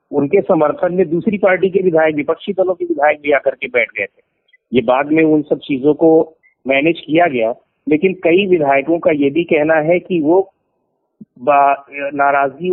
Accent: native